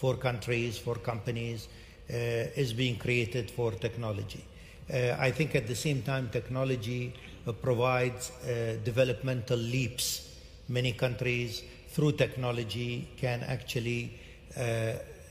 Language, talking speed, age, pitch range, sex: English, 120 wpm, 60-79, 115-135 Hz, male